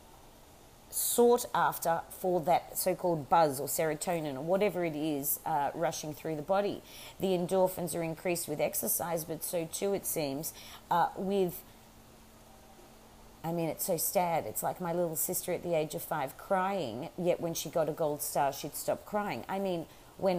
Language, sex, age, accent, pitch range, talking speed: English, female, 40-59, Australian, 155-190 Hz, 175 wpm